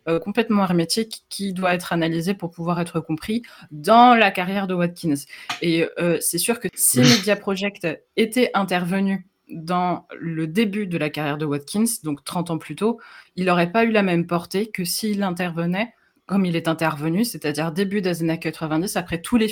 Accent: French